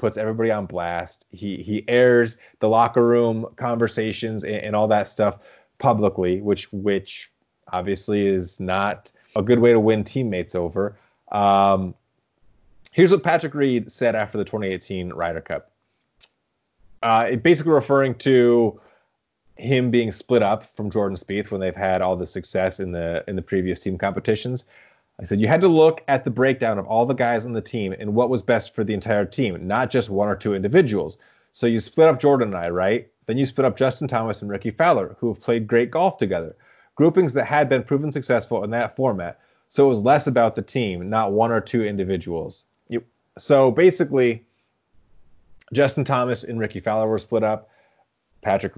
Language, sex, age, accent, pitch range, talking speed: English, male, 30-49, American, 100-125 Hz, 185 wpm